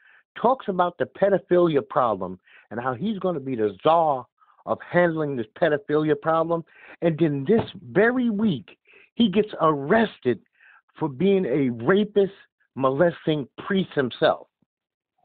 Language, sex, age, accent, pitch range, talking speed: English, male, 50-69, American, 135-200 Hz, 130 wpm